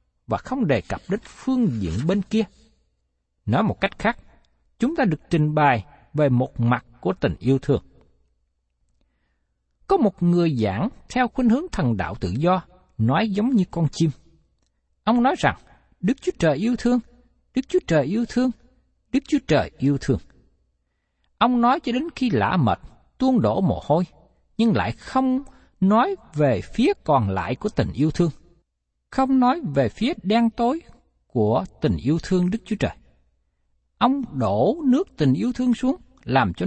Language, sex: Vietnamese, male